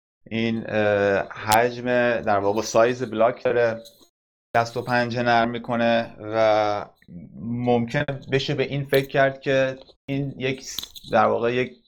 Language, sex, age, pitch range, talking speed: Persian, male, 30-49, 110-130 Hz, 125 wpm